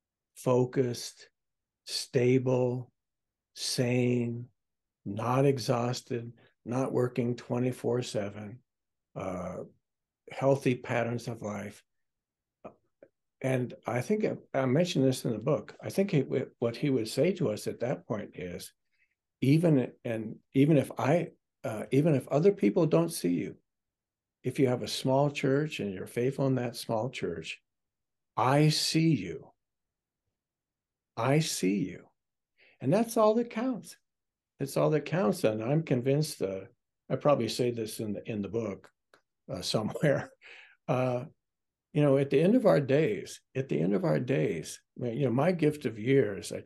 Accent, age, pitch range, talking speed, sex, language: American, 60-79, 115-140 Hz, 150 wpm, male, English